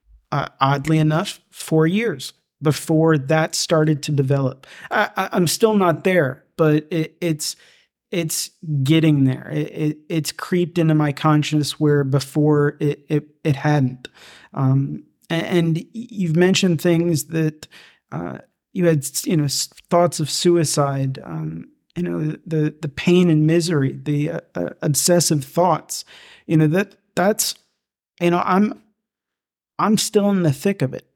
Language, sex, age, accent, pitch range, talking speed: English, male, 40-59, American, 150-170 Hz, 150 wpm